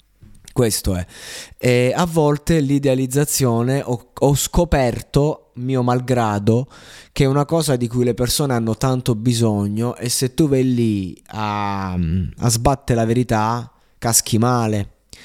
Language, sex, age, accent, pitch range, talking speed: Italian, male, 20-39, native, 110-135 Hz, 135 wpm